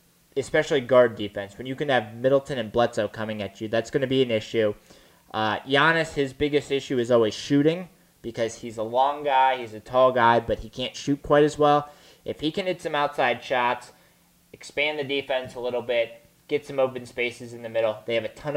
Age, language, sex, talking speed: 20-39, English, male, 215 wpm